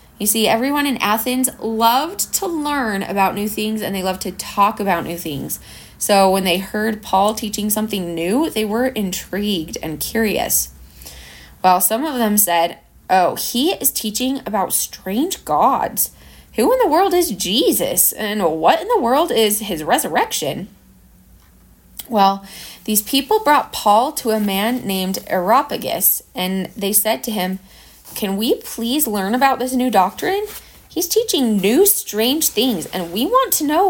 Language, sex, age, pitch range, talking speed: English, female, 20-39, 195-285 Hz, 160 wpm